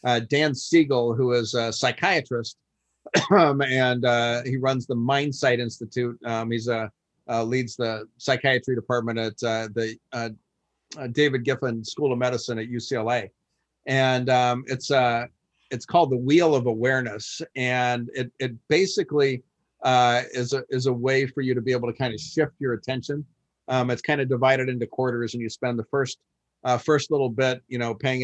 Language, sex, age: English, male, 50-69